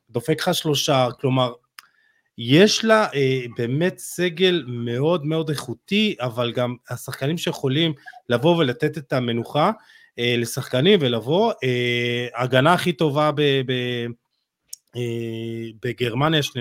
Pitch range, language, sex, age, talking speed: 115-150 Hz, Hebrew, male, 30-49, 110 wpm